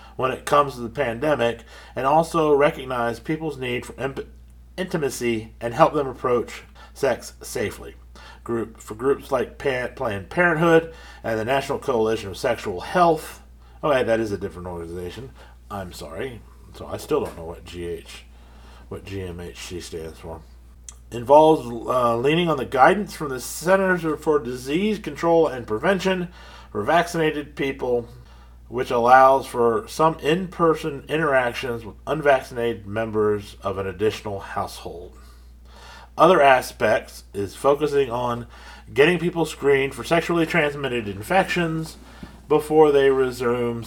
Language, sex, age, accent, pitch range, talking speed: English, male, 40-59, American, 100-155 Hz, 135 wpm